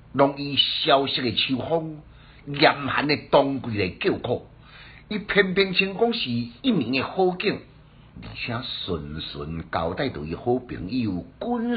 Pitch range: 95-145 Hz